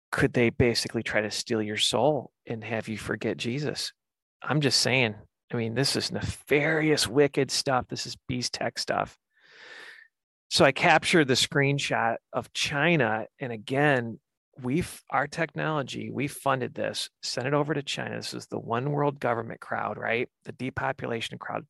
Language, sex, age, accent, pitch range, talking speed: English, male, 40-59, American, 115-145 Hz, 165 wpm